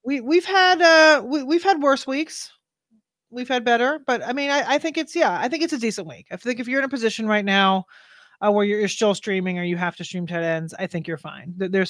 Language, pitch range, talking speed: English, 185-240 Hz, 270 wpm